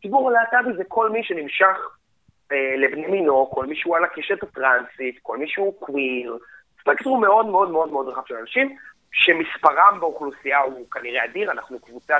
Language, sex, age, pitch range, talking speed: Hebrew, male, 30-49, 135-210 Hz, 160 wpm